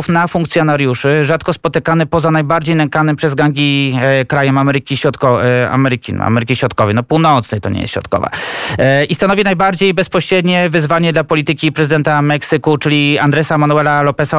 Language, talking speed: Polish, 140 wpm